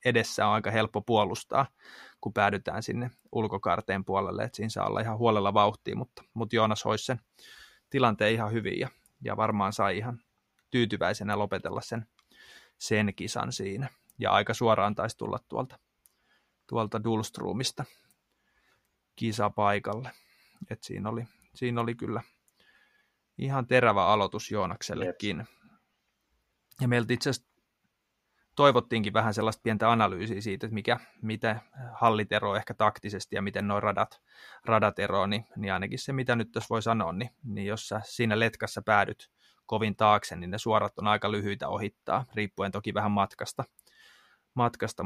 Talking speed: 140 wpm